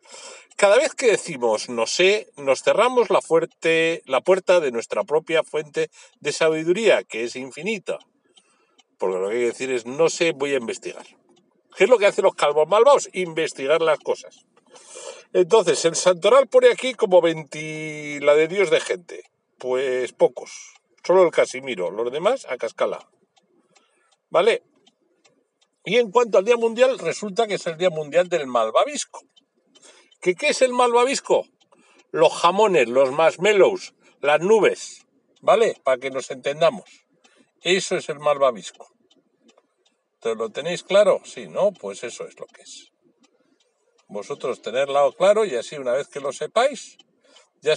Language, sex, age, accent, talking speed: Spanish, male, 60-79, Spanish, 150 wpm